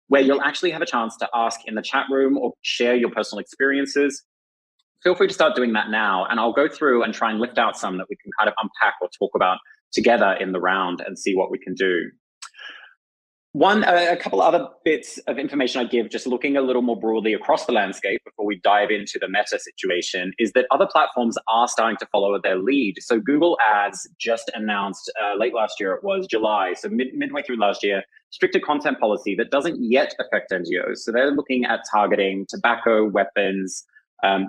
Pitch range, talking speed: 105-160 Hz, 215 wpm